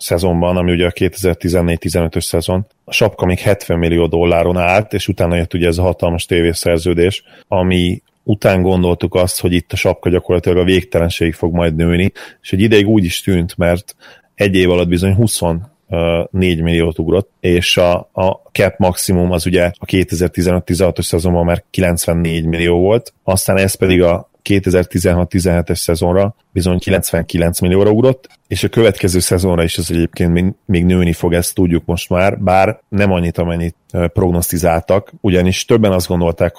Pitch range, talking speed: 85-95 Hz, 155 wpm